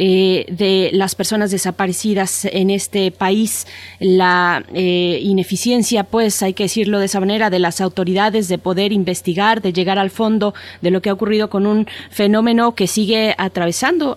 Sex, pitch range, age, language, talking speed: female, 185-215 Hz, 20-39, Spanish, 165 wpm